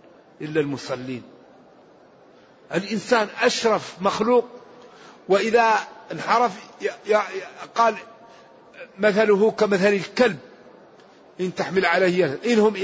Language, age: Arabic, 50-69